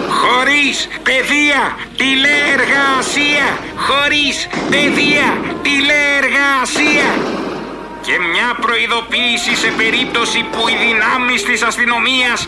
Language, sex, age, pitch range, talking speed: Greek, male, 60-79, 240-275 Hz, 75 wpm